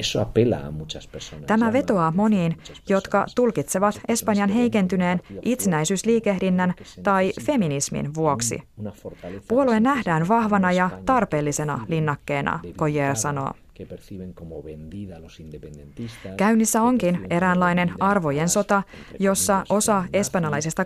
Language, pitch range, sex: Finnish, 150-205 Hz, female